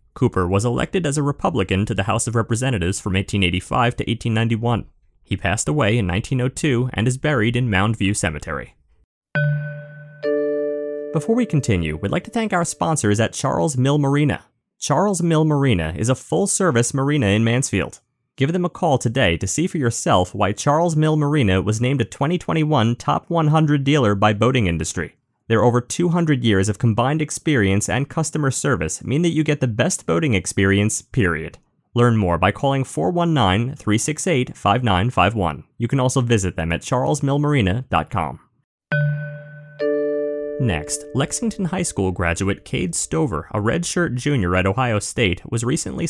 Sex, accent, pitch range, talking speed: male, American, 100-150 Hz, 150 wpm